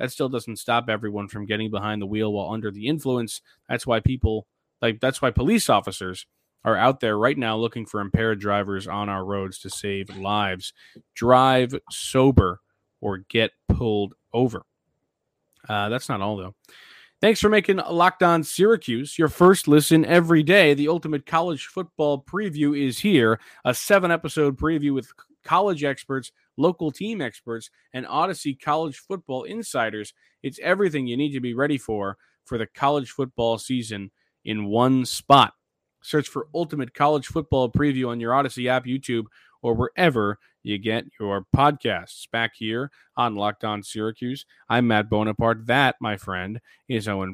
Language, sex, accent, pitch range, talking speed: English, male, American, 110-145 Hz, 160 wpm